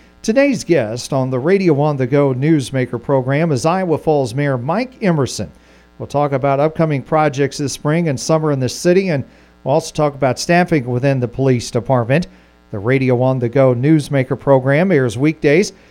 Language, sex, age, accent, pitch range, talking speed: English, male, 40-59, American, 120-155 Hz, 175 wpm